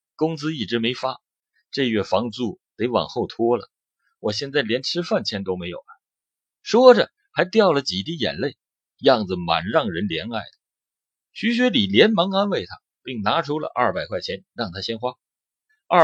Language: Chinese